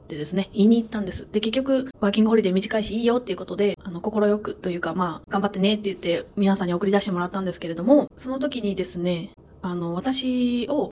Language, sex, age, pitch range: Japanese, female, 20-39, 185-225 Hz